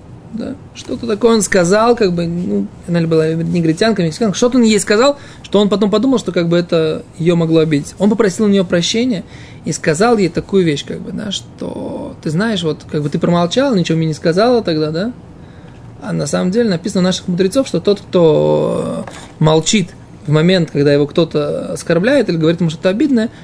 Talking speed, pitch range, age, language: 190 wpm, 160-215 Hz, 20-39, Russian